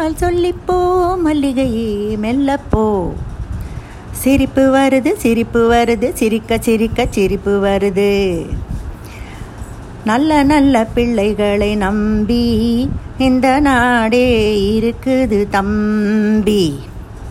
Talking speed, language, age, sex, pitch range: 65 wpm, Tamil, 50-69, female, 220-275 Hz